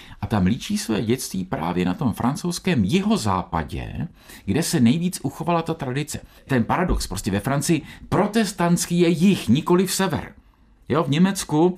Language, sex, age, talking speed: Czech, male, 50-69, 155 wpm